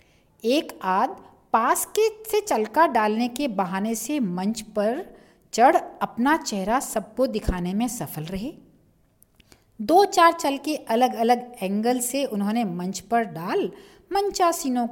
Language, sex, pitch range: Hindi, female, 195-330 Hz